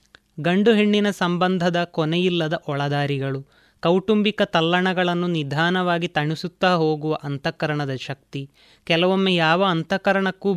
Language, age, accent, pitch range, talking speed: Kannada, 20-39, native, 155-190 Hz, 85 wpm